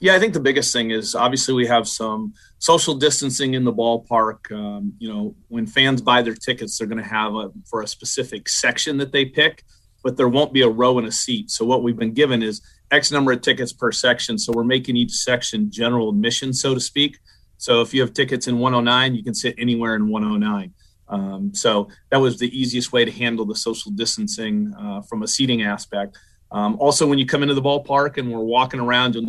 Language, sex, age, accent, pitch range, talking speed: English, male, 30-49, American, 115-140 Hz, 225 wpm